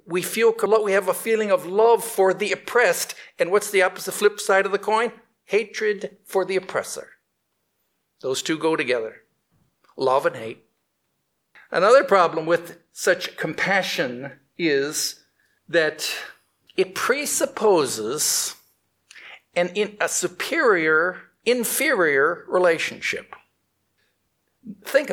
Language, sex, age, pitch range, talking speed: English, male, 60-79, 165-270 Hz, 110 wpm